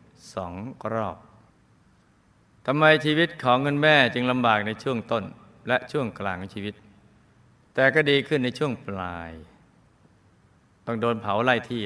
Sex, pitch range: male, 105-130 Hz